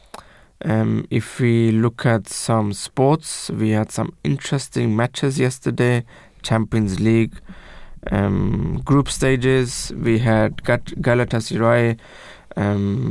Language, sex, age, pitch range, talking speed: English, male, 20-39, 110-125 Hz, 100 wpm